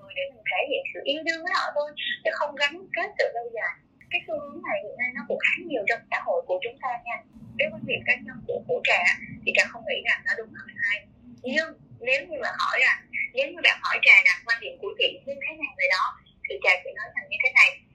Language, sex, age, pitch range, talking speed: Vietnamese, female, 20-39, 275-445 Hz, 270 wpm